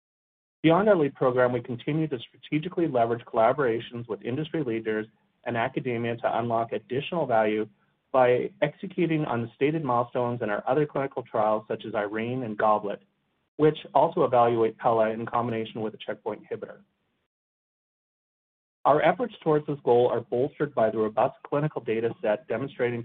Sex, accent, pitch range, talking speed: male, American, 115-145 Hz, 155 wpm